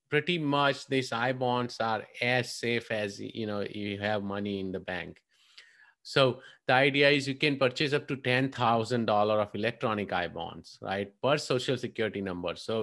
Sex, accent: male, Indian